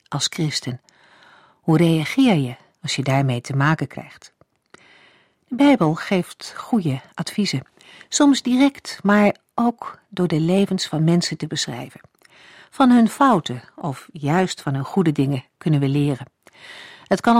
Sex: female